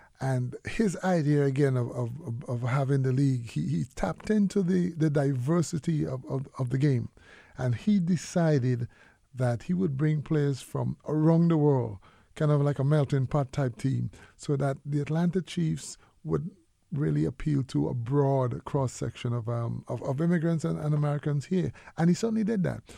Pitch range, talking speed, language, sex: 130-155 Hz, 180 wpm, English, male